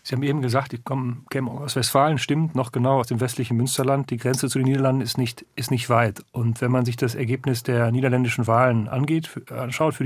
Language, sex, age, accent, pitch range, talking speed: German, male, 40-59, German, 115-135 Hz, 215 wpm